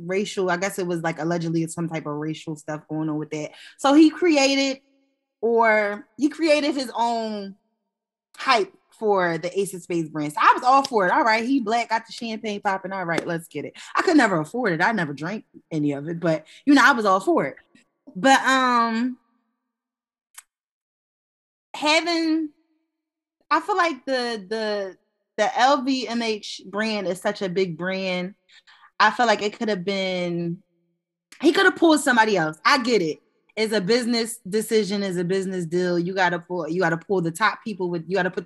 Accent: American